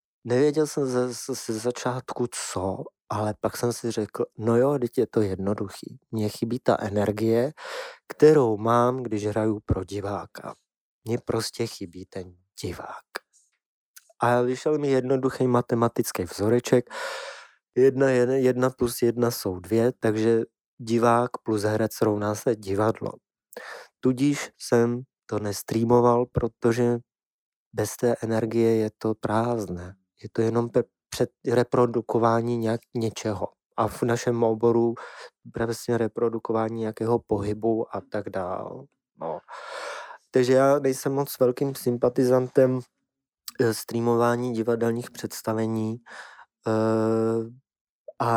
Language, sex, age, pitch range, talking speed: Czech, male, 20-39, 110-120 Hz, 115 wpm